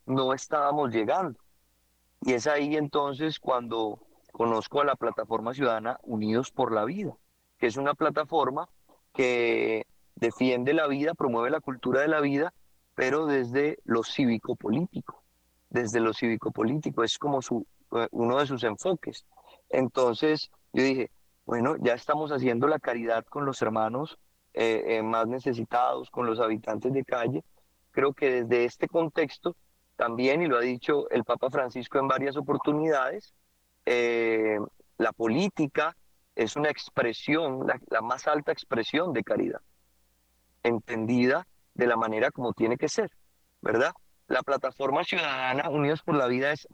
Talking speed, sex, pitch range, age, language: 145 wpm, male, 110-145 Hz, 30-49, Spanish